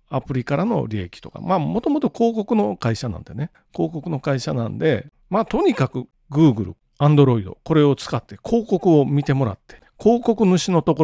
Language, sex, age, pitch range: Japanese, male, 40-59, 120-185 Hz